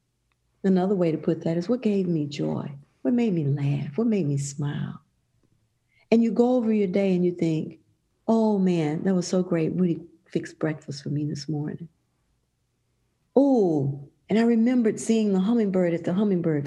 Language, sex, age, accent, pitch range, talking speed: English, female, 50-69, American, 145-185 Hz, 180 wpm